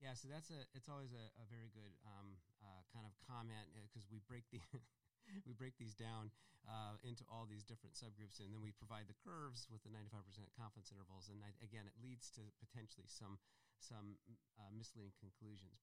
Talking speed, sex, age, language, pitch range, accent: 205 wpm, male, 40-59, English, 105-120 Hz, American